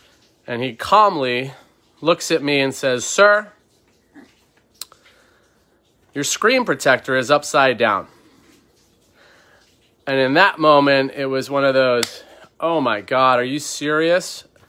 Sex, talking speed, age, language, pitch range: male, 125 wpm, 30-49, English, 120-145 Hz